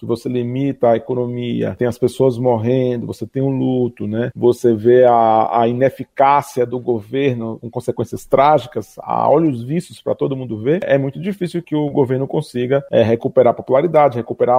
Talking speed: 170 wpm